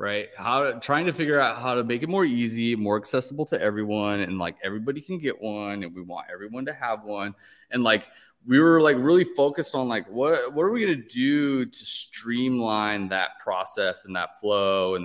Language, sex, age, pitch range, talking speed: English, male, 20-39, 95-135 Hz, 215 wpm